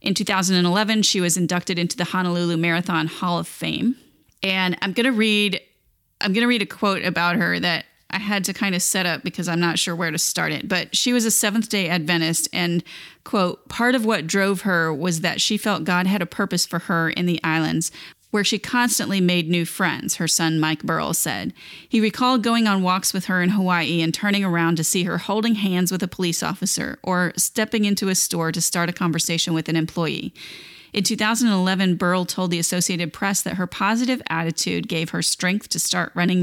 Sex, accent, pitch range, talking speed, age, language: female, American, 170-205 Hz, 210 wpm, 30-49, English